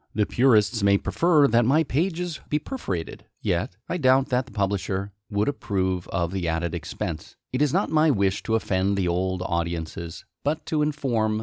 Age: 40-59